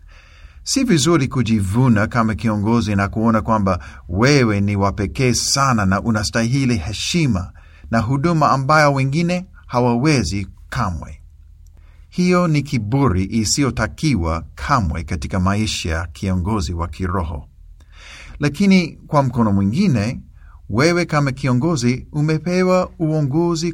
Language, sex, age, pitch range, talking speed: Swahili, male, 50-69, 95-145 Hz, 105 wpm